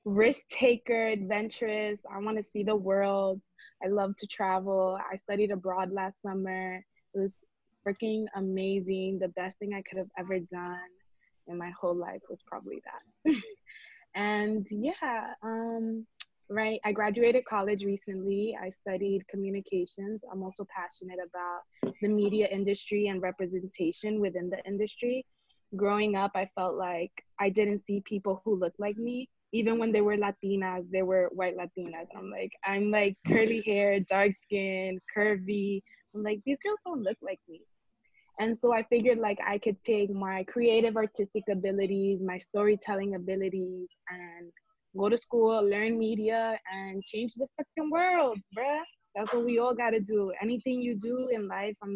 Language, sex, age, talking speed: English, female, 20-39, 160 wpm